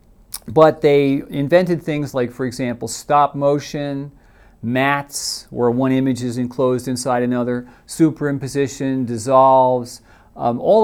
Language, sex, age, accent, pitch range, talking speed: English, male, 40-59, American, 120-145 Hz, 115 wpm